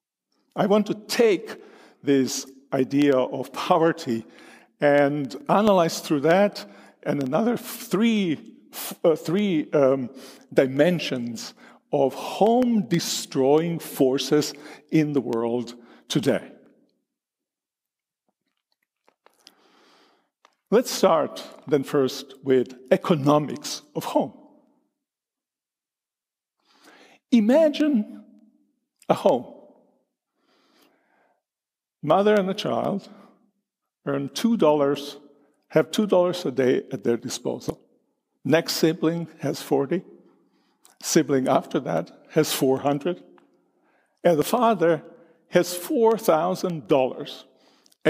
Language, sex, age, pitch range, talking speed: English, male, 50-69, 140-200 Hz, 80 wpm